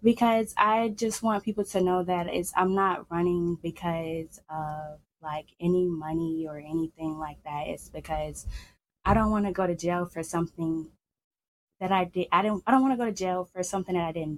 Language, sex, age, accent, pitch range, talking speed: English, female, 20-39, American, 155-205 Hz, 205 wpm